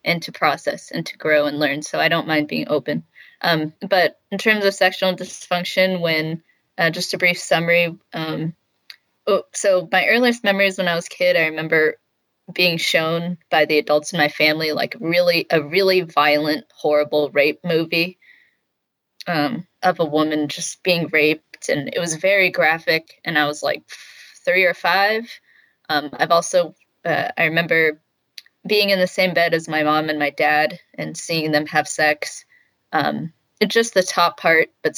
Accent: American